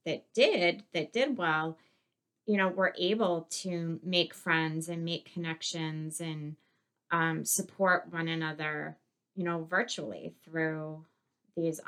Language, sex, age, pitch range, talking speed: English, female, 30-49, 155-180 Hz, 125 wpm